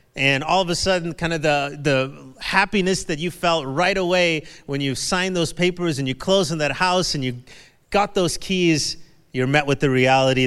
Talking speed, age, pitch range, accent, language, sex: 205 wpm, 30-49, 130-170 Hz, American, English, male